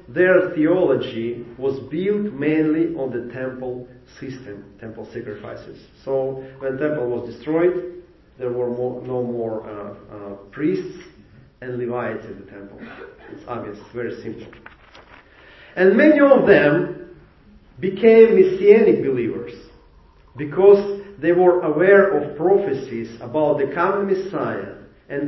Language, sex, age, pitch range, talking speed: English, male, 40-59, 115-180 Hz, 120 wpm